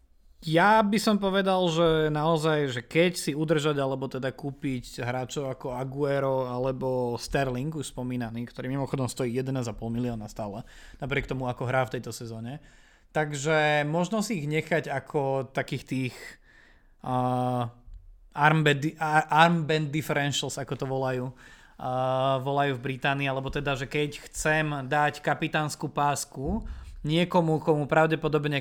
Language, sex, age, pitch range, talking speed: Slovak, male, 20-39, 135-160 Hz, 130 wpm